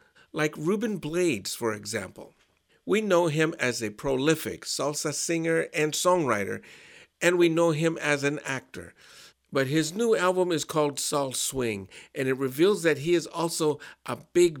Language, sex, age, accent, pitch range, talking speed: English, male, 50-69, American, 130-170 Hz, 160 wpm